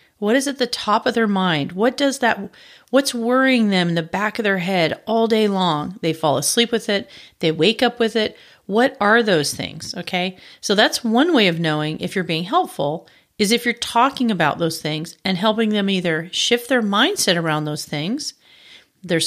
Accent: American